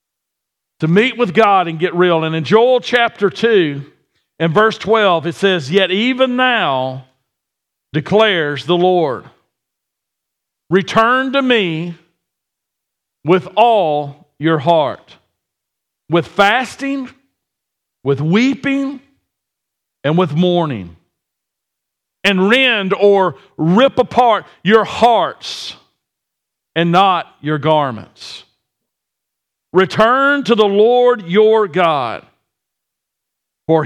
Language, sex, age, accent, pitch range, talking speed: English, male, 50-69, American, 155-225 Hz, 95 wpm